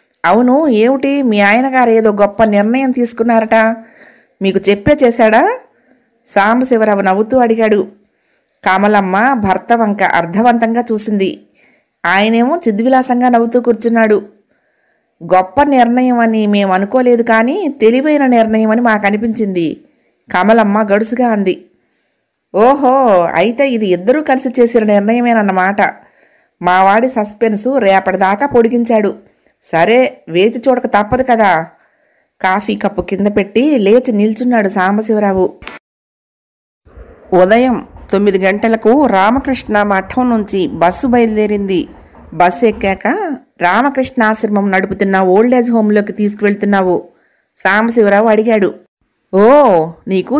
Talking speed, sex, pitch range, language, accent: 95 wpm, female, 200-245 Hz, English, Indian